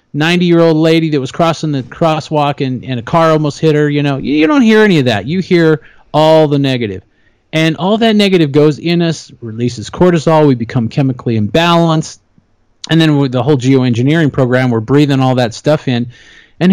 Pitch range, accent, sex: 130-165 Hz, American, male